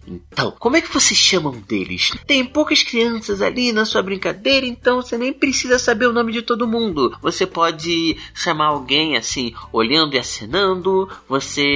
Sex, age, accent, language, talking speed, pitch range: male, 30-49, Brazilian, Portuguese, 170 wpm, 150-225 Hz